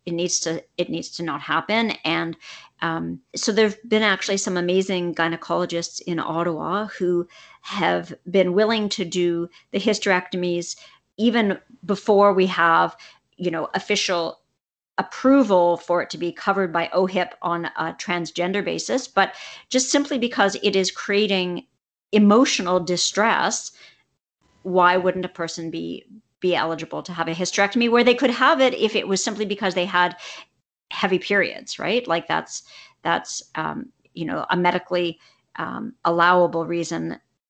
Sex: female